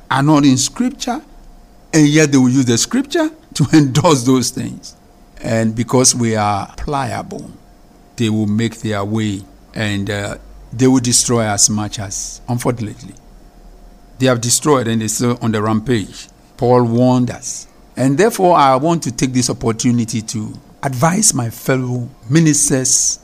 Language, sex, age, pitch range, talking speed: English, male, 50-69, 110-135 Hz, 150 wpm